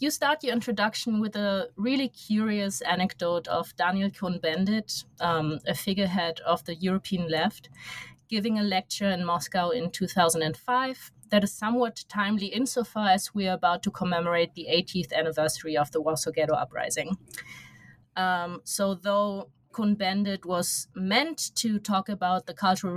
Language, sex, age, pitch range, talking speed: English, female, 30-49, 170-210 Hz, 150 wpm